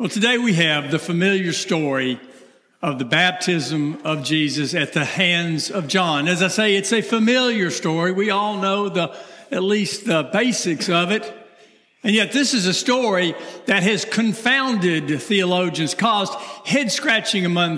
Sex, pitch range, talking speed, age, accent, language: male, 170-220 Hz, 160 wpm, 60-79, American, English